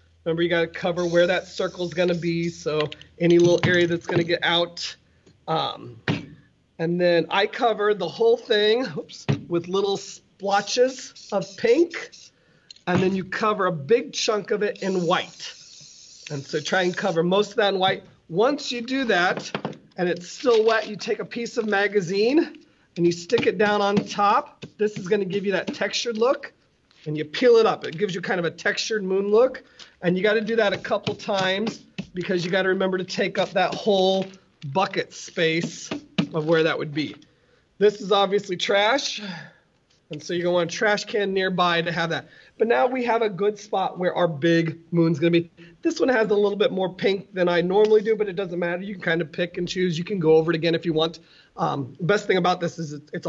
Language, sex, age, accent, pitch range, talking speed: English, male, 40-59, American, 170-210 Hz, 215 wpm